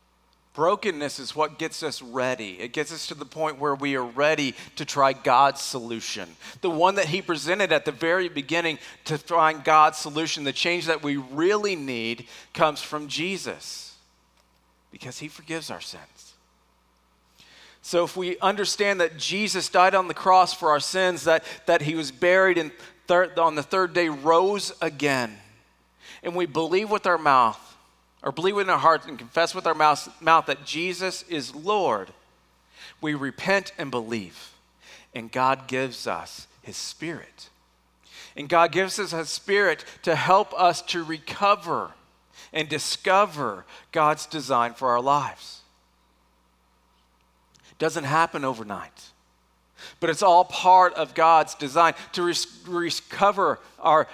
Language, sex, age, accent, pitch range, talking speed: English, male, 40-59, American, 125-175 Hz, 150 wpm